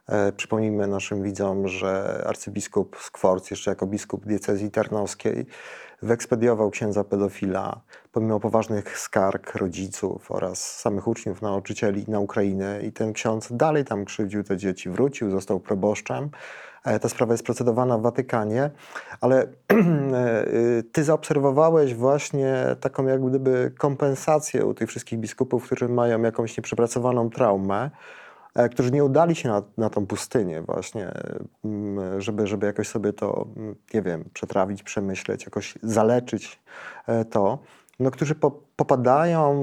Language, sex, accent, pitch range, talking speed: Polish, male, native, 105-135 Hz, 125 wpm